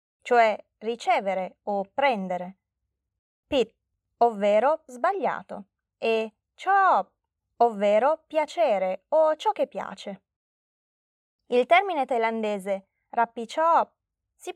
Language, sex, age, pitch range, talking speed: Italian, female, 20-39, 200-320 Hz, 80 wpm